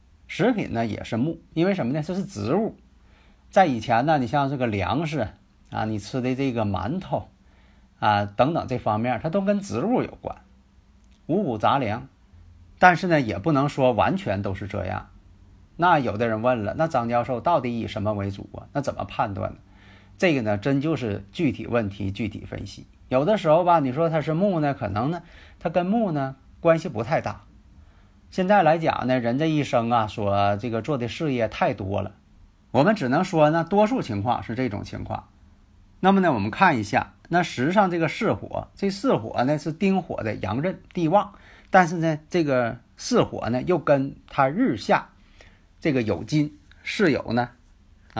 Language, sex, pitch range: Chinese, male, 100-160 Hz